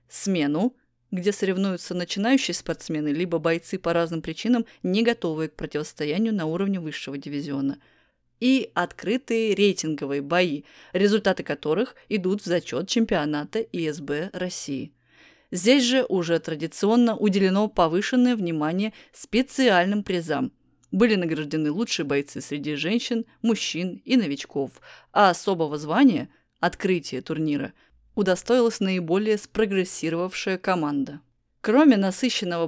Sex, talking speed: female, 110 wpm